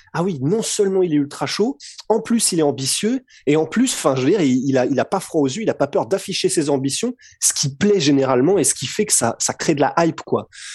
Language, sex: French, male